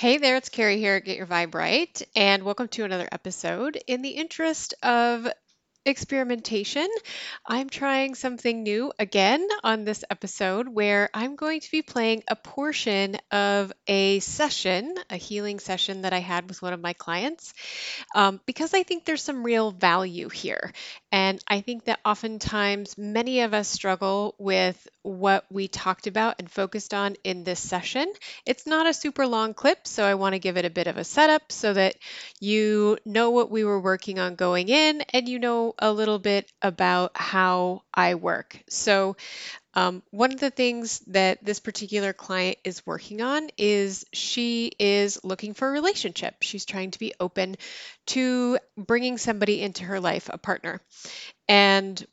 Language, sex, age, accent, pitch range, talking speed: English, female, 30-49, American, 195-250 Hz, 175 wpm